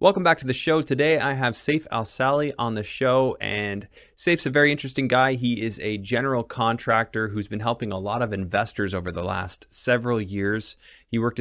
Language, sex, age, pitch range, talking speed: English, male, 20-39, 95-125 Hz, 200 wpm